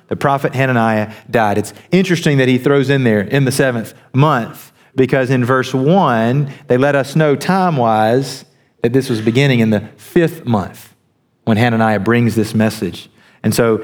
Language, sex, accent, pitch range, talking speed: English, male, American, 120-165 Hz, 175 wpm